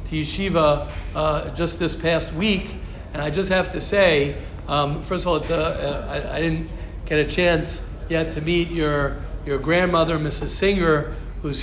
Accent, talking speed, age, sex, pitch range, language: American, 175 wpm, 50-69, male, 150-185 Hz, English